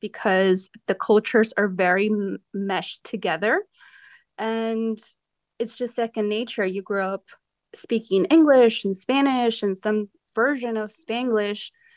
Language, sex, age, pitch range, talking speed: English, female, 20-39, 205-235 Hz, 120 wpm